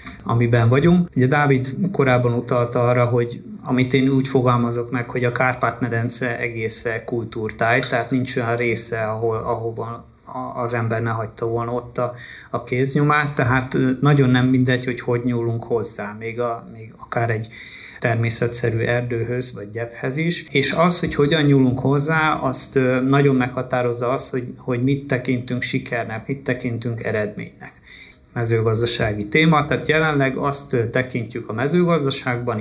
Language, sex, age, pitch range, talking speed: Hungarian, male, 30-49, 115-135 Hz, 140 wpm